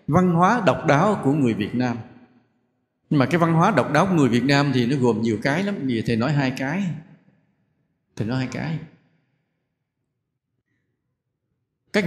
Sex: male